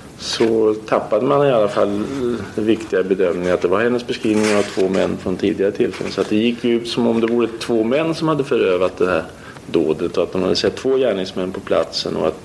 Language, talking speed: Swedish, 230 wpm